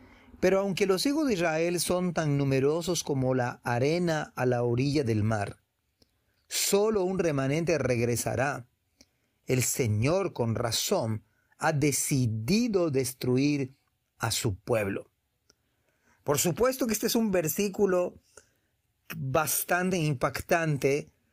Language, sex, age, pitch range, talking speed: Spanish, male, 40-59, 125-175 Hz, 115 wpm